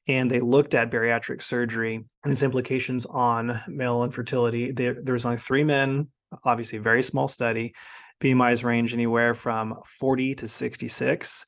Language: English